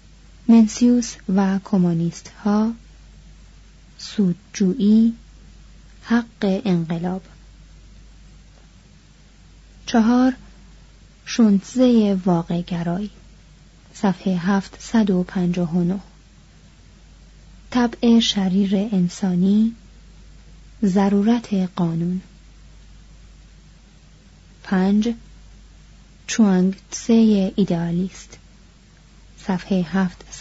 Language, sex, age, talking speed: Persian, female, 30-49, 45 wpm